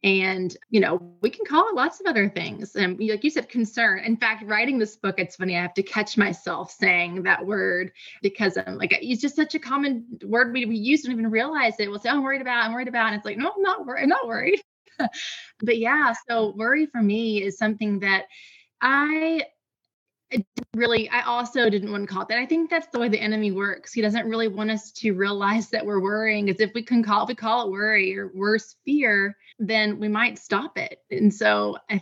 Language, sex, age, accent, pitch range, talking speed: English, female, 20-39, American, 195-235 Hz, 240 wpm